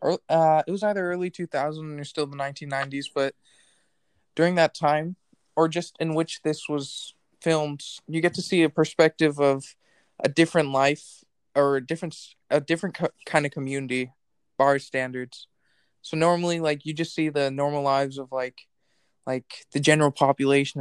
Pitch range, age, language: 140-160 Hz, 20-39, English